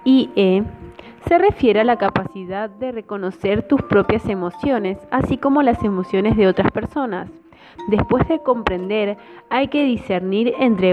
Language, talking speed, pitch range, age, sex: Spanish, 135 wpm, 195-260 Hz, 20-39, female